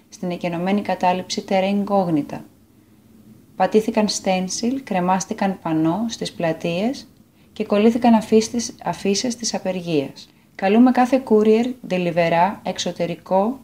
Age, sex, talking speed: 20-39, female, 90 wpm